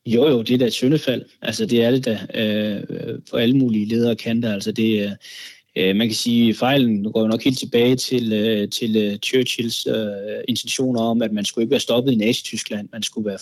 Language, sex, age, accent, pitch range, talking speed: Danish, male, 20-39, native, 105-125 Hz, 220 wpm